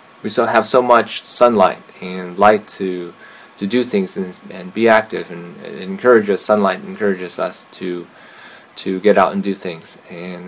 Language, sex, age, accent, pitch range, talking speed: English, male, 20-39, American, 95-115 Hz, 170 wpm